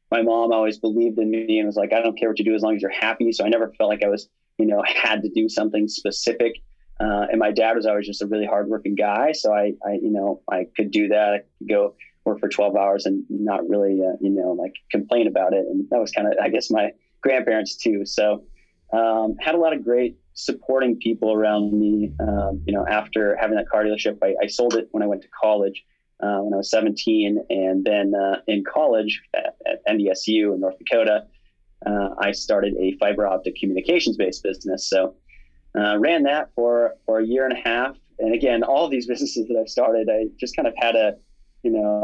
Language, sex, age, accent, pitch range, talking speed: English, male, 20-39, American, 105-115 Hz, 230 wpm